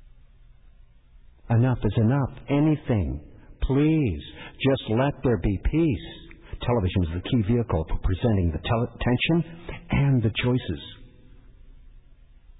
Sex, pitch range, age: male, 90-130 Hz, 60-79